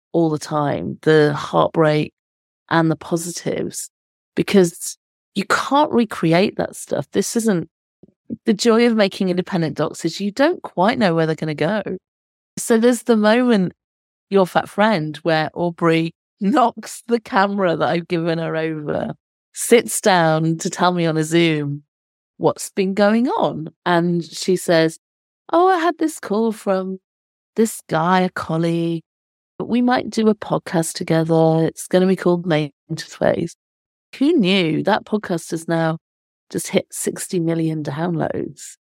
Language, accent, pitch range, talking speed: English, British, 160-205 Hz, 150 wpm